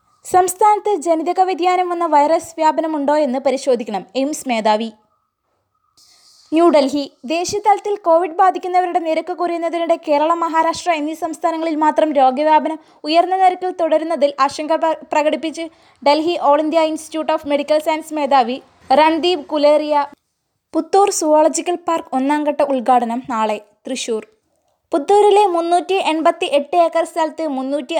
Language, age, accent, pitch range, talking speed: Malayalam, 20-39, native, 270-335 Hz, 105 wpm